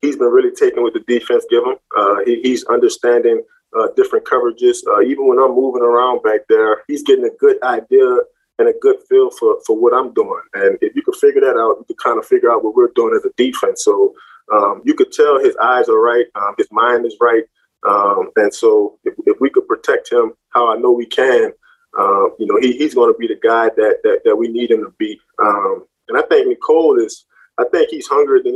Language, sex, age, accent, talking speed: English, male, 20-39, American, 240 wpm